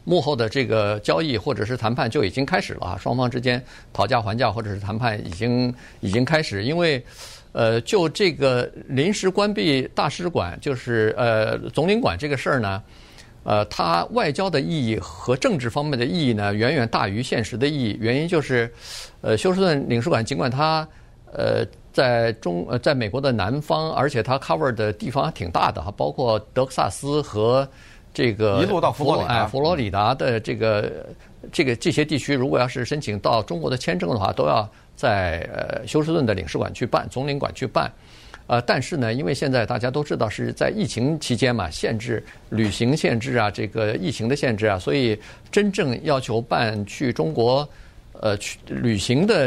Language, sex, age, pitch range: Chinese, male, 50-69, 110-145 Hz